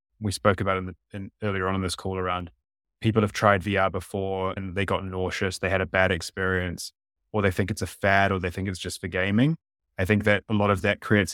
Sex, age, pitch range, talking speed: male, 20-39, 95-105 Hz, 250 wpm